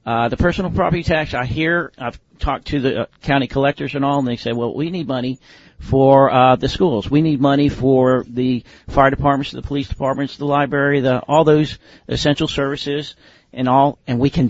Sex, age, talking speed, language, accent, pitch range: male, 50-69, 205 wpm, English, American, 120-145 Hz